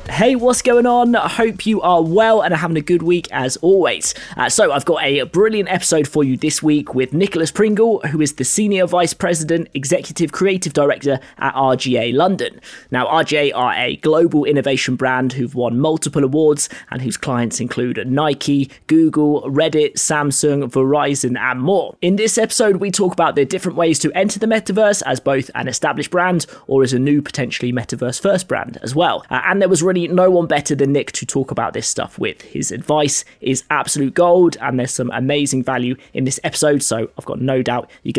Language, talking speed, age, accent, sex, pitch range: English, 200 wpm, 20-39, British, male, 135-185 Hz